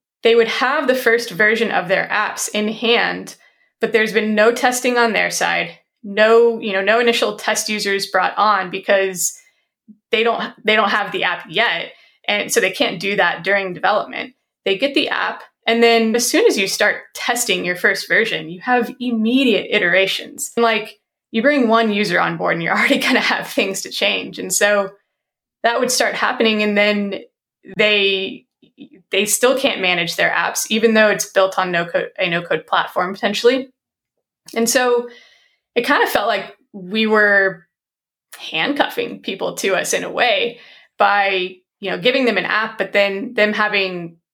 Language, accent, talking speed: English, American, 180 wpm